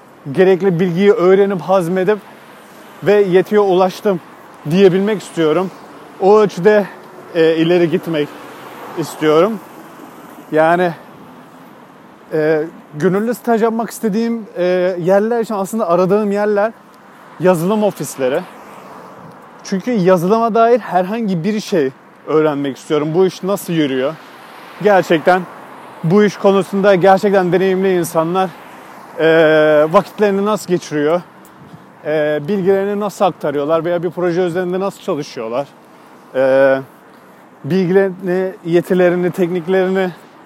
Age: 30-49